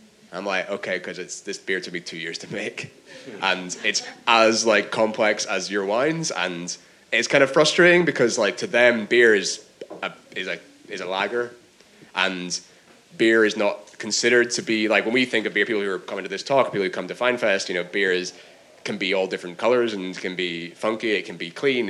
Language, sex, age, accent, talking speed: English, male, 20-39, British, 220 wpm